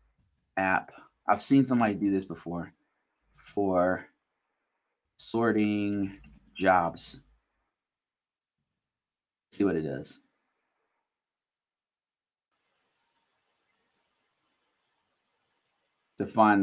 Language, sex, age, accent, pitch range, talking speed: English, male, 30-49, American, 95-120 Hz, 60 wpm